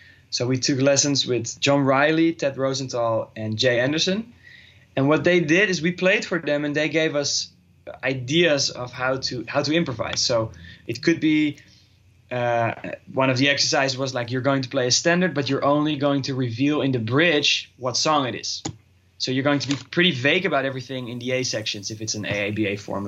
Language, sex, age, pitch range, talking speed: English, male, 20-39, 115-150 Hz, 210 wpm